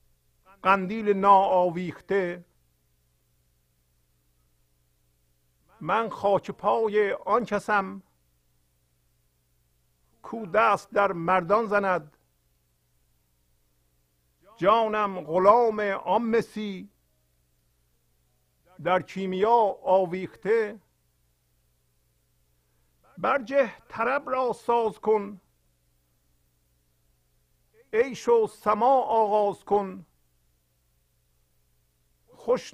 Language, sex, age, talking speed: Persian, male, 50-69, 50 wpm